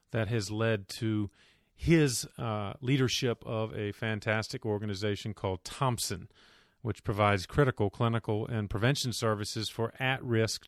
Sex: male